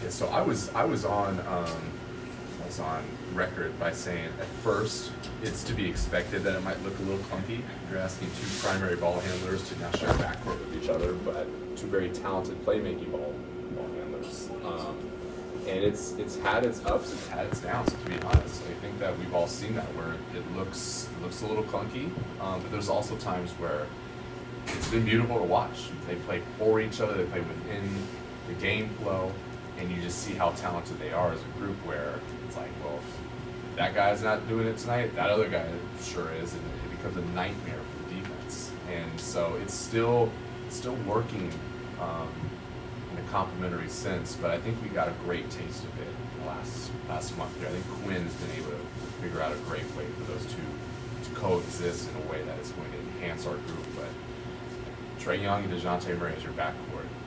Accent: American